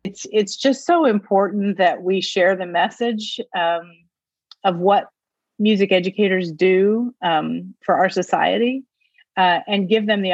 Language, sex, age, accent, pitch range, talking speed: English, female, 40-59, American, 170-205 Hz, 145 wpm